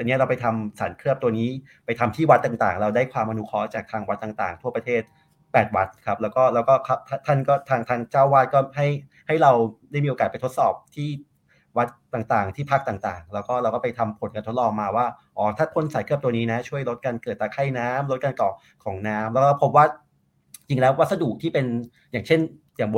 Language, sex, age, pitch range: Thai, male, 30-49, 110-135 Hz